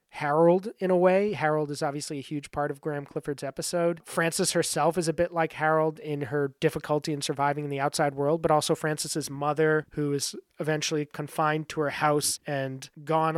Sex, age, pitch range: male, 30-49, 140-160 Hz